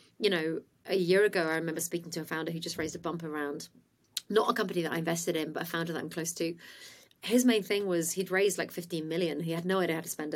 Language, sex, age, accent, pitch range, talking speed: English, female, 30-49, British, 160-190 Hz, 270 wpm